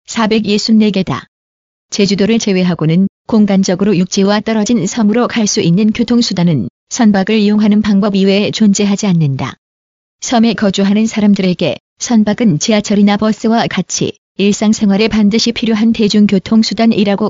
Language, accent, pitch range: Korean, native, 195-225 Hz